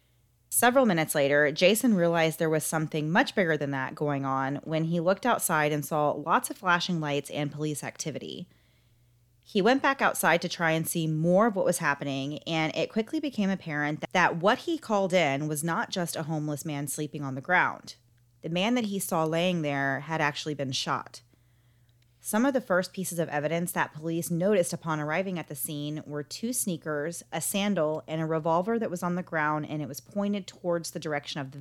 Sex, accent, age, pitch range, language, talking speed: female, American, 30-49, 145-180 Hz, English, 205 wpm